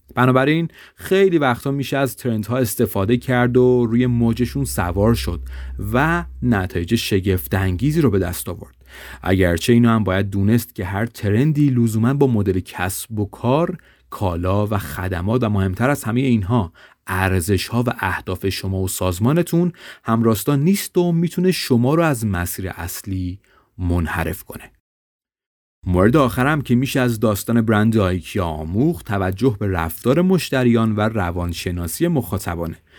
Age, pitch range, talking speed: 30-49, 95-135 Hz, 140 wpm